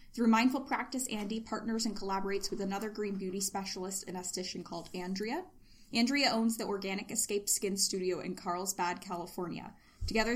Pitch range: 185-225 Hz